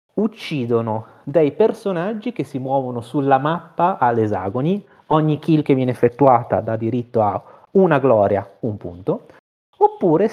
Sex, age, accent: male, 30-49, native